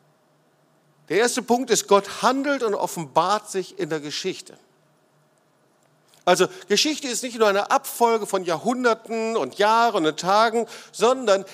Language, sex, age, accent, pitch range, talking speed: German, male, 50-69, German, 160-230 Hz, 135 wpm